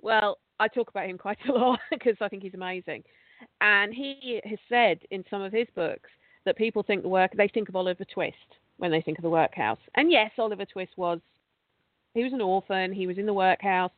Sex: female